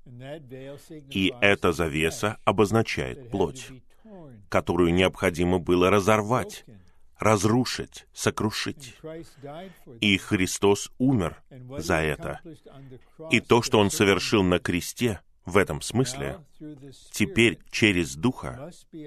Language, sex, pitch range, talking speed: Russian, male, 80-130 Hz, 90 wpm